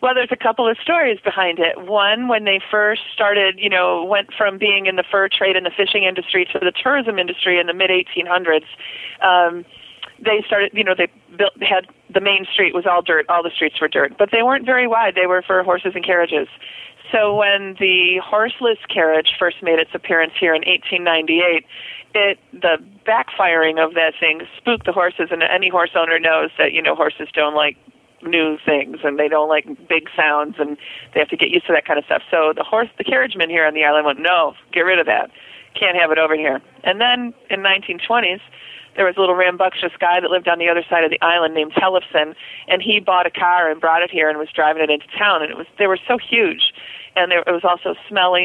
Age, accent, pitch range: 40-59, American, 165-205 Hz